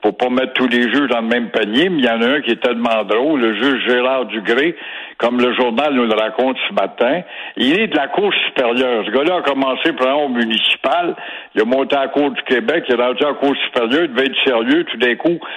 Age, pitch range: 60-79, 120-160 Hz